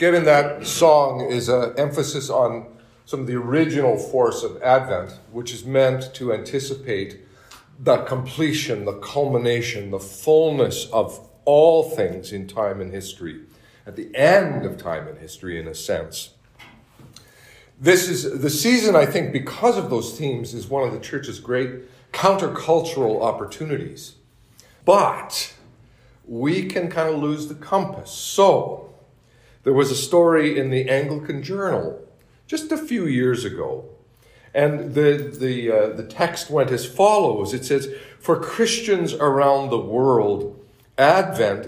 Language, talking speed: English, 145 wpm